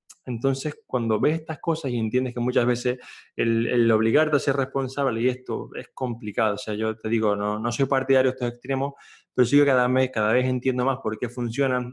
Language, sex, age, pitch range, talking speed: Spanish, male, 20-39, 110-130 Hz, 215 wpm